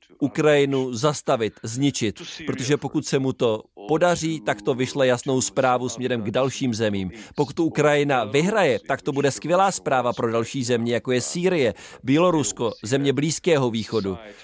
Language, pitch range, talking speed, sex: Czech, 125-145 Hz, 150 wpm, male